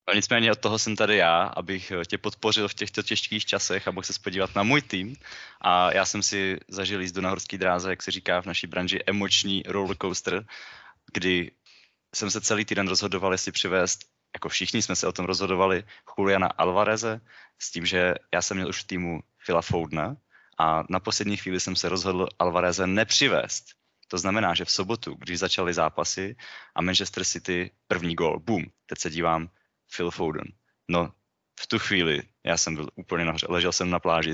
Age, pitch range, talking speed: 20-39, 90-100 Hz, 185 wpm